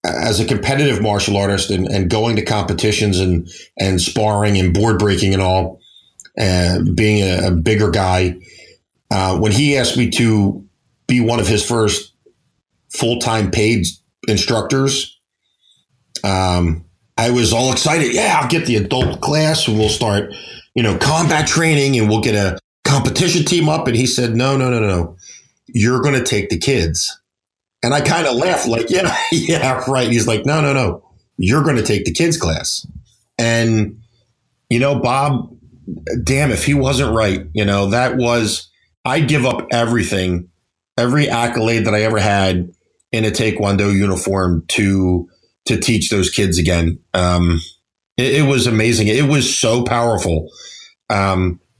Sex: male